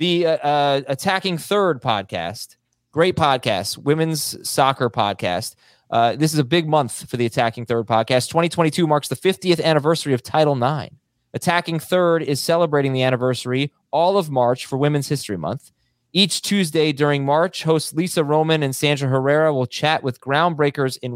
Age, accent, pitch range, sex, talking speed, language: 30-49, American, 125-165 Hz, male, 160 wpm, English